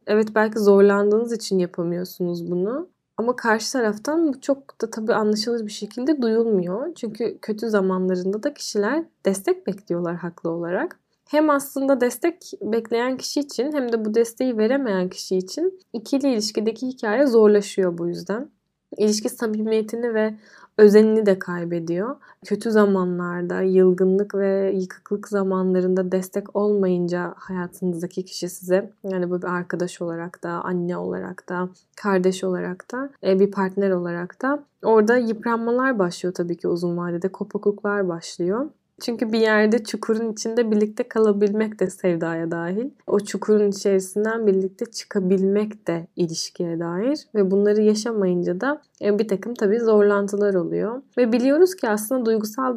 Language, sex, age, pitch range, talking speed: Turkish, female, 10-29, 185-230 Hz, 135 wpm